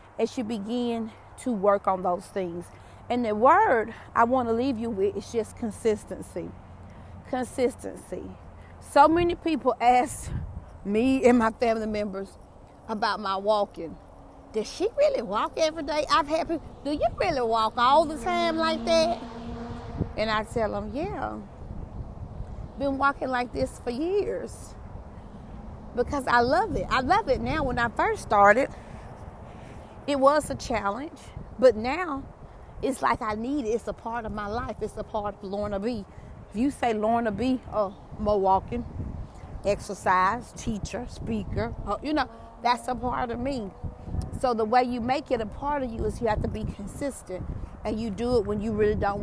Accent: American